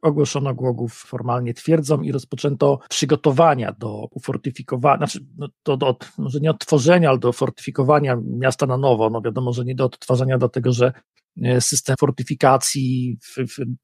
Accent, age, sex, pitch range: native, 40-59, male, 130-150 Hz